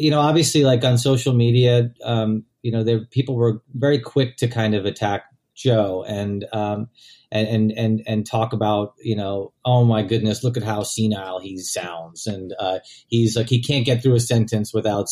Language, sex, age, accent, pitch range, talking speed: English, male, 40-59, American, 110-125 Hz, 190 wpm